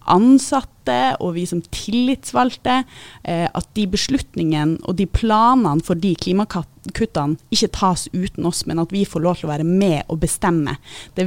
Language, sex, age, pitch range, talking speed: English, female, 30-49, 160-205 Hz, 155 wpm